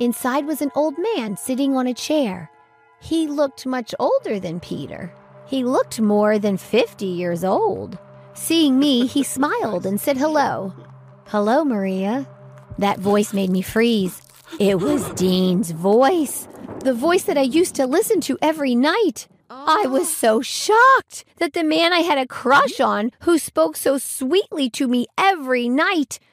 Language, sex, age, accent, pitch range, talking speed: English, female, 40-59, American, 195-280 Hz, 160 wpm